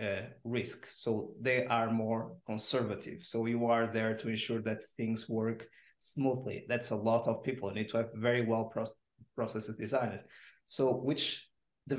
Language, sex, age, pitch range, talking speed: English, male, 20-39, 115-140 Hz, 160 wpm